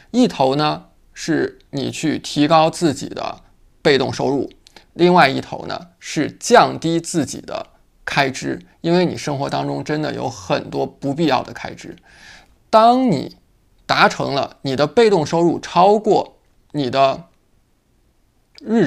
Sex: male